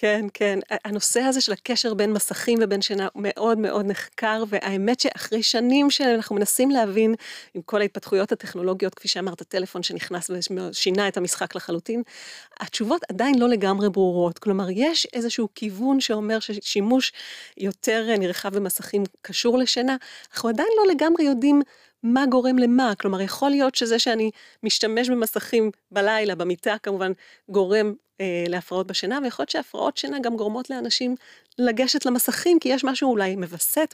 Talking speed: 145 wpm